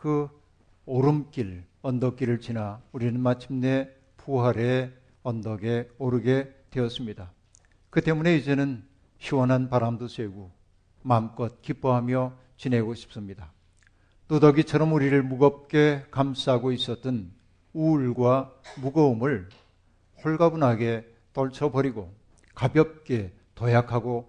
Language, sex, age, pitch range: Korean, male, 50-69, 105-135 Hz